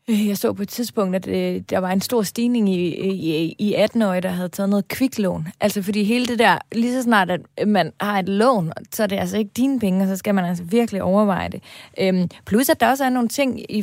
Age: 30-49